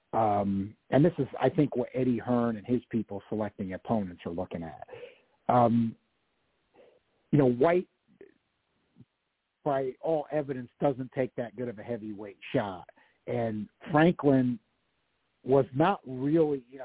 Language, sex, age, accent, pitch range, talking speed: English, male, 50-69, American, 105-140 Hz, 135 wpm